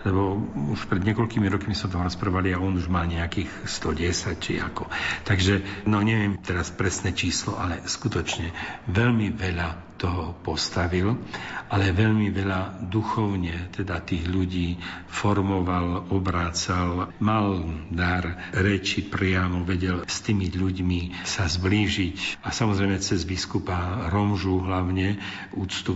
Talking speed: 125 wpm